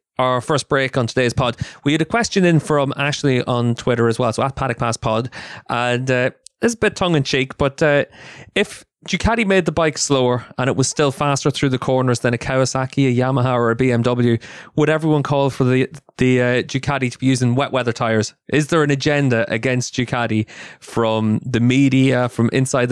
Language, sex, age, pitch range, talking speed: English, male, 20-39, 120-135 Hz, 205 wpm